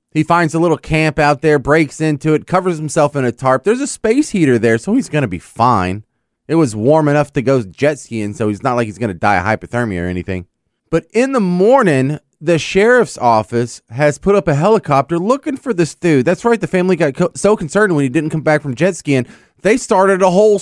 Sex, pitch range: male, 140-195 Hz